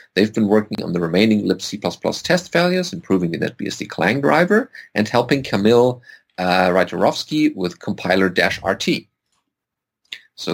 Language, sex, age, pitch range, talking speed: English, male, 40-59, 95-140 Hz, 125 wpm